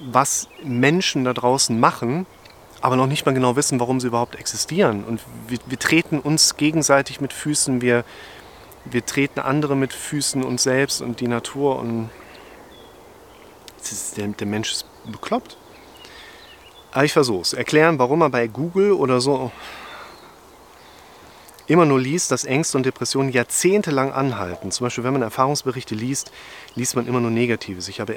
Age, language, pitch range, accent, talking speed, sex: 30-49, German, 110-135 Hz, German, 150 wpm, male